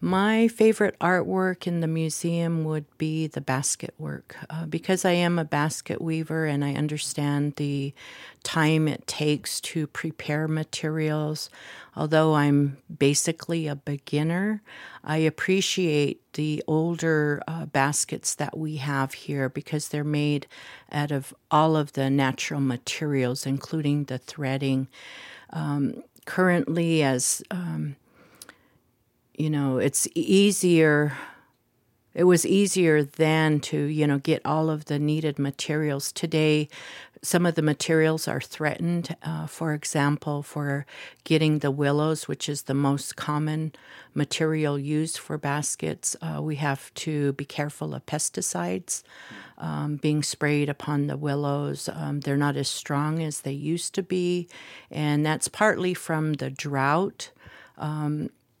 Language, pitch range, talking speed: English, 145-160 Hz, 135 wpm